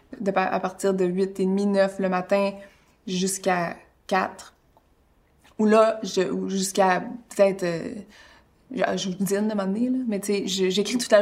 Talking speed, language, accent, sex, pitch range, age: 165 wpm, French, Canadian, female, 185-210 Hz, 20-39